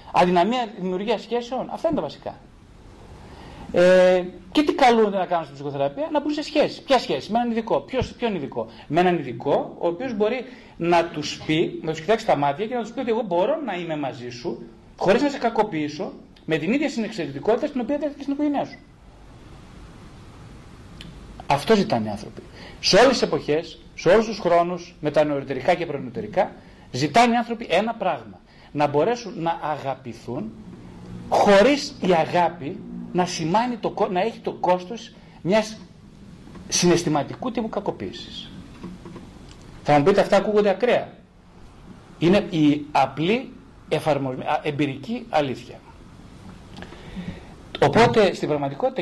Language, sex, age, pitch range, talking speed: Greek, male, 30-49, 145-225 Hz, 140 wpm